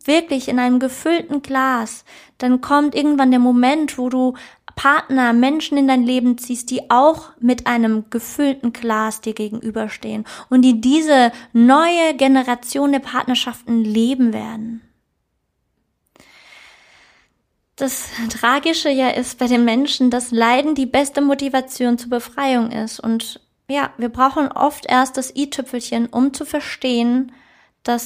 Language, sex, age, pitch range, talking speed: German, female, 20-39, 225-265 Hz, 135 wpm